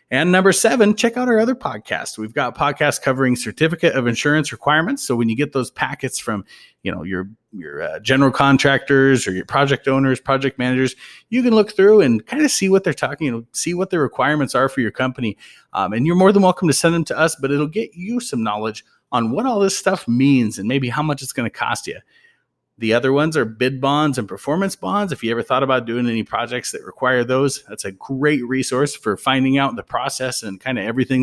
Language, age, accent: English, 30-49, American